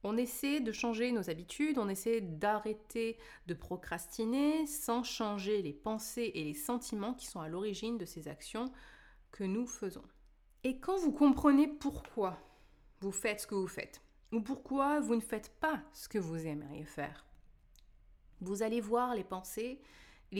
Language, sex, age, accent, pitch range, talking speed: French, female, 20-39, French, 175-245 Hz, 165 wpm